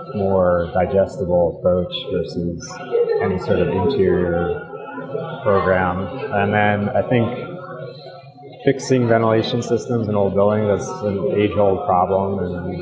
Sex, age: male, 30-49